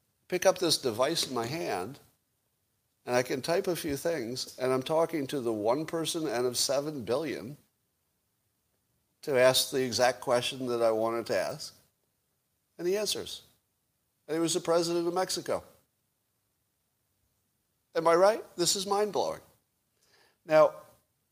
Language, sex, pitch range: English, male, 95-135 Hz